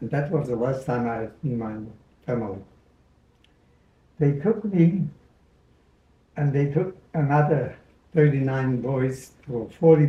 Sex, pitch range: male, 120-160 Hz